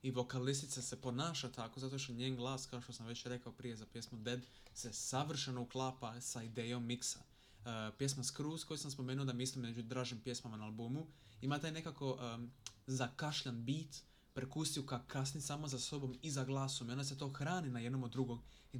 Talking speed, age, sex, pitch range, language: 195 wpm, 20-39, male, 125-145 Hz, Croatian